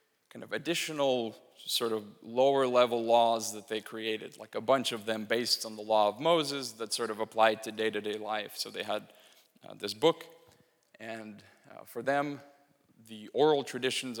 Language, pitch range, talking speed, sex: Russian, 110-125 Hz, 175 wpm, male